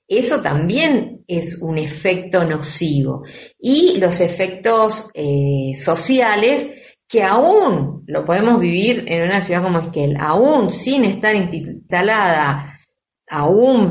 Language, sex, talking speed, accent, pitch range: Spanish, female, 110 wpm, Argentinian, 155-190 Hz